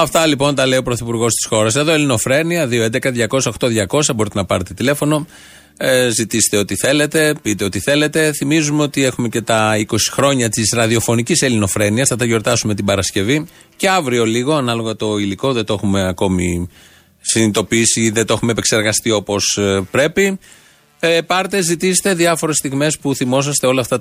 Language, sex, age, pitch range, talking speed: Greek, male, 30-49, 115-155 Hz, 160 wpm